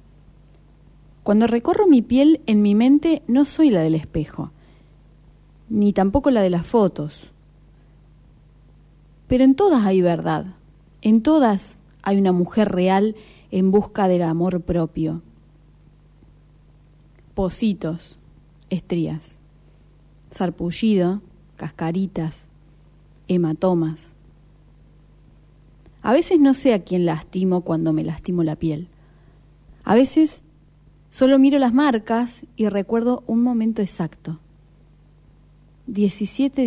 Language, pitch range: Spanish, 160-245 Hz